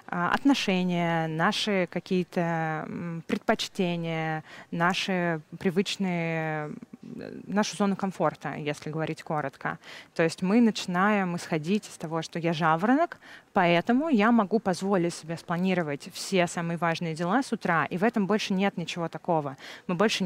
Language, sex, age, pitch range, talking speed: Russian, female, 20-39, 165-215 Hz, 125 wpm